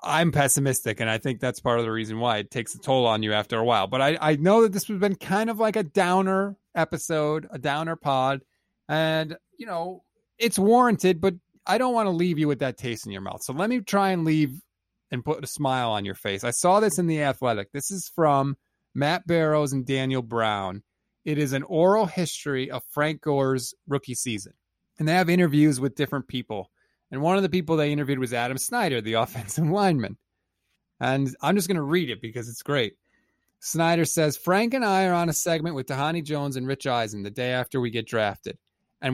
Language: English